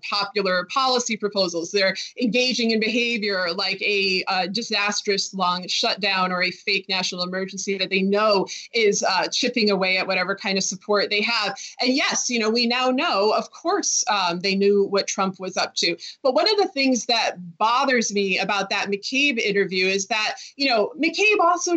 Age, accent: 20-39, American